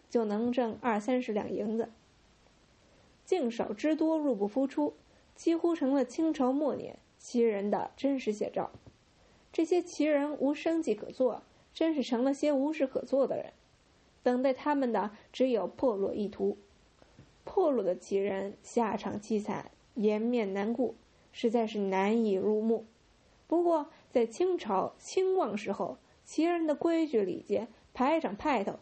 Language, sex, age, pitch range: English, female, 20-39, 225-305 Hz